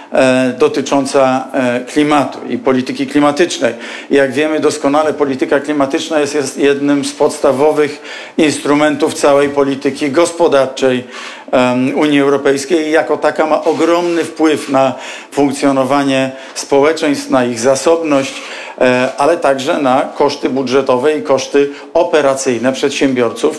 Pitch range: 135-160 Hz